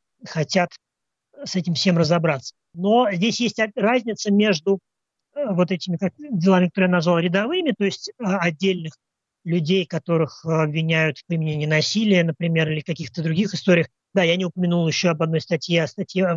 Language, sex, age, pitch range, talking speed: Russian, male, 30-49, 155-185 Hz, 155 wpm